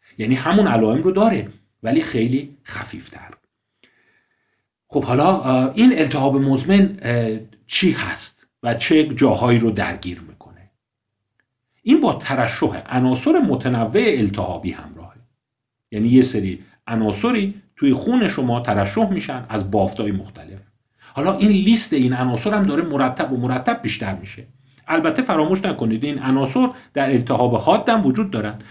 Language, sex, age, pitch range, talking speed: Persian, male, 50-69, 105-145 Hz, 130 wpm